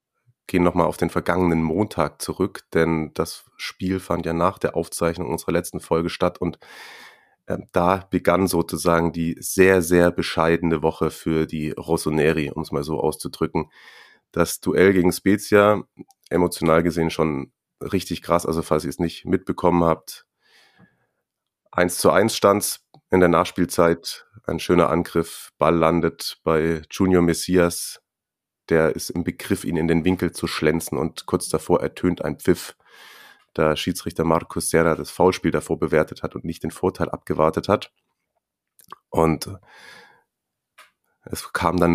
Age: 30-49